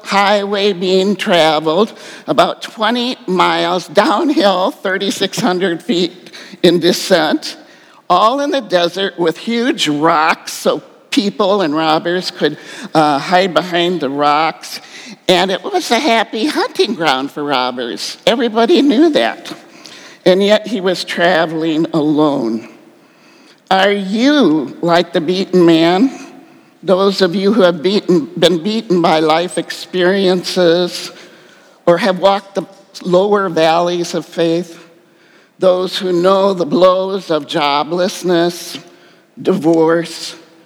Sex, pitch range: male, 165-210 Hz